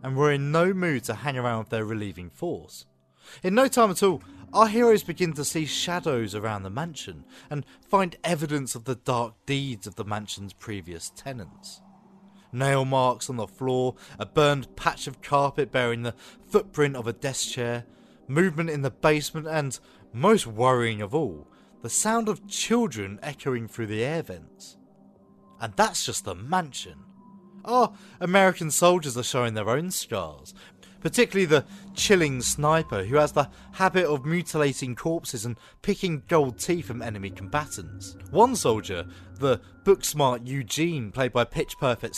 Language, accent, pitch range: English, British, 110-170 Hz